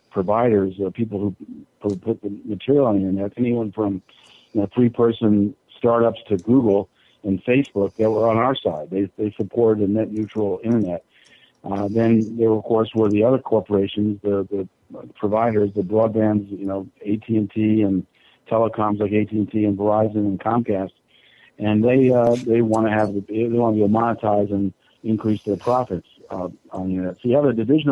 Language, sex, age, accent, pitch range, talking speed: English, male, 50-69, American, 100-120 Hz, 190 wpm